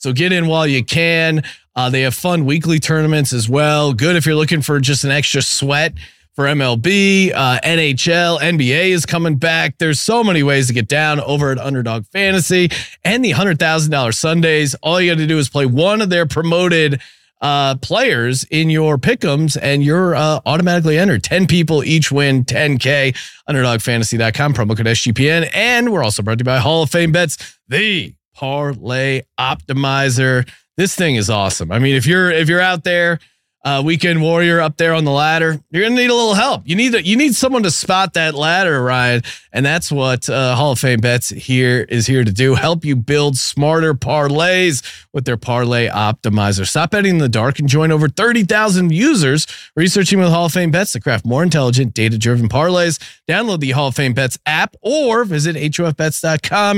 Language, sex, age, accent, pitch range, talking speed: English, male, 30-49, American, 130-170 Hz, 190 wpm